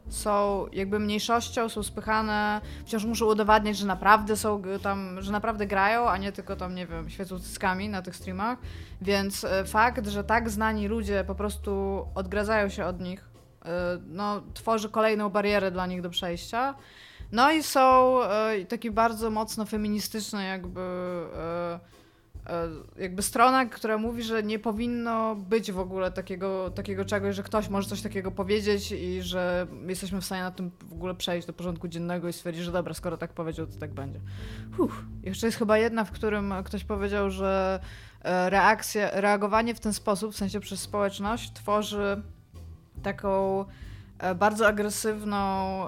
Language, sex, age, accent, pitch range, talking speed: Polish, female, 20-39, native, 180-215 Hz, 155 wpm